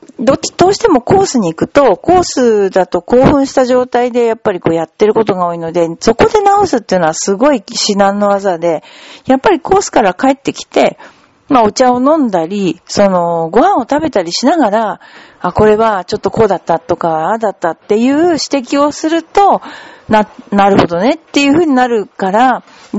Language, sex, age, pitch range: Japanese, female, 40-59, 190-280 Hz